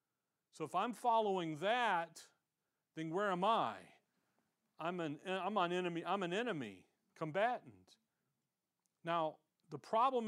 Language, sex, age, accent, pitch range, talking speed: English, male, 40-59, American, 165-195 Hz, 125 wpm